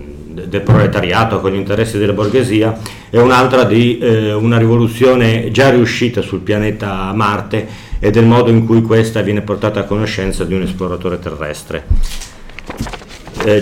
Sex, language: male, Italian